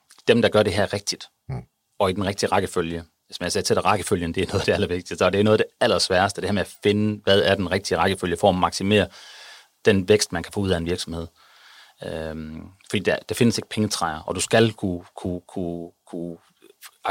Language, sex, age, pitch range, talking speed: Danish, male, 30-49, 85-100 Hz, 225 wpm